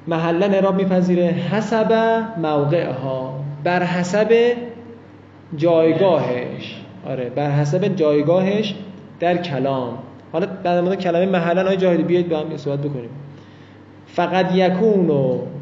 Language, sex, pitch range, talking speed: Persian, male, 140-185 Hz, 110 wpm